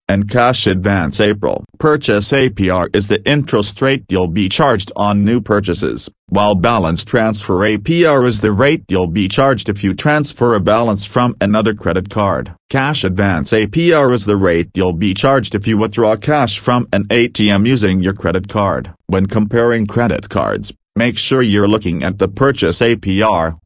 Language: English